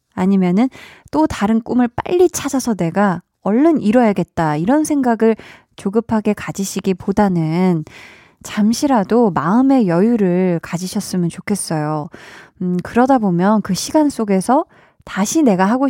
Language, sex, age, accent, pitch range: Korean, female, 20-39, native, 180-250 Hz